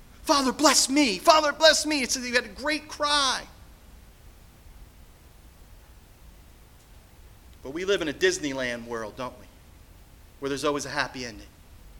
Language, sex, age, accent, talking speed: English, male, 40-59, American, 135 wpm